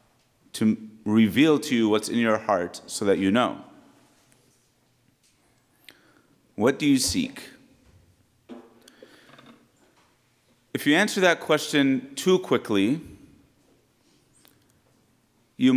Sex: male